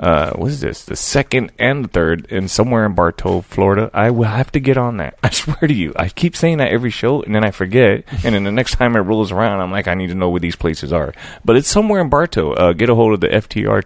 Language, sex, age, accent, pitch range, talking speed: English, male, 30-49, American, 90-125 Hz, 275 wpm